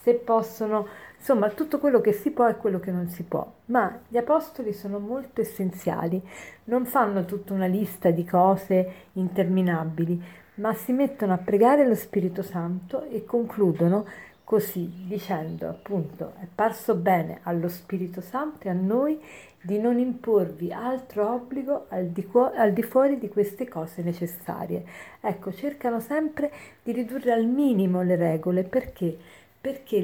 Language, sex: Italian, female